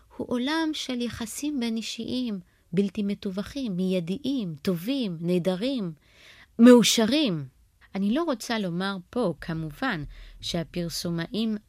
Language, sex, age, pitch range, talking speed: Hebrew, female, 30-49, 165-215 Hz, 90 wpm